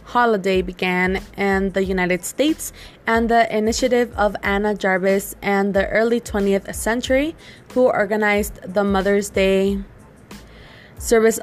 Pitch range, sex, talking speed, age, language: 195-220 Hz, female, 120 wpm, 20-39, English